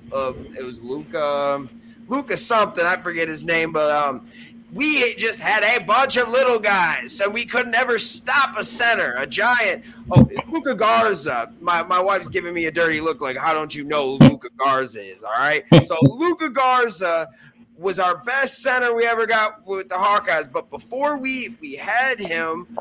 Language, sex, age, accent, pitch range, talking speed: English, male, 20-39, American, 175-235 Hz, 180 wpm